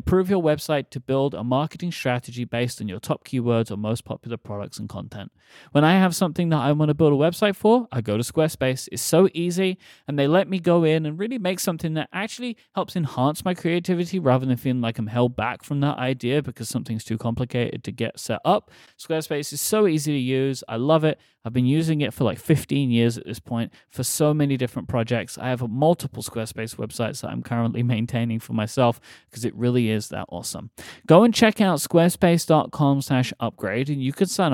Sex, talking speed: male, 215 wpm